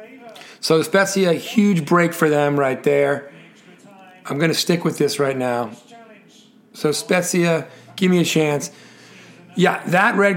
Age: 40-59